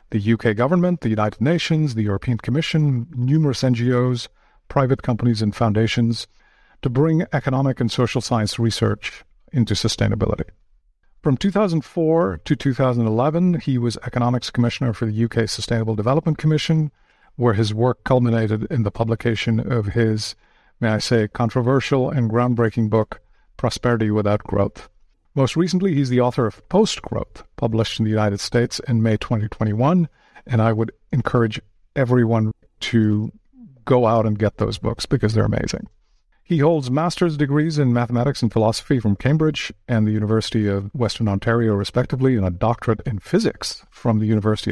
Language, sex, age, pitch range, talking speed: English, male, 50-69, 110-135 Hz, 150 wpm